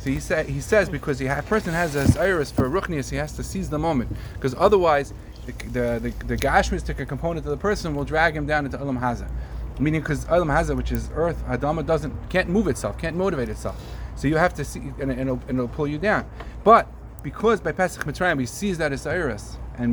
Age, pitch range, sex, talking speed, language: 30-49, 120-170 Hz, male, 230 wpm, English